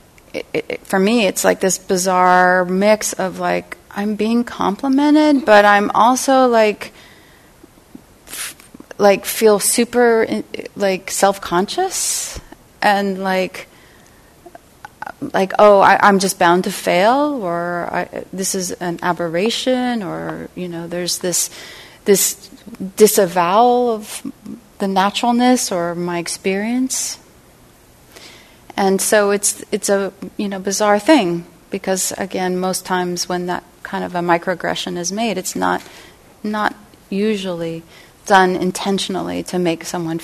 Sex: female